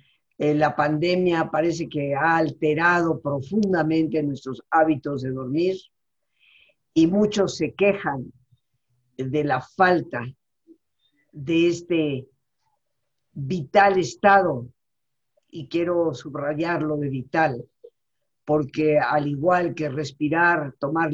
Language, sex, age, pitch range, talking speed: Spanish, female, 50-69, 135-170 Hz, 95 wpm